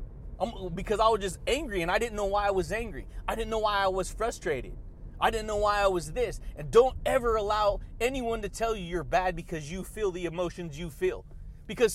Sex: male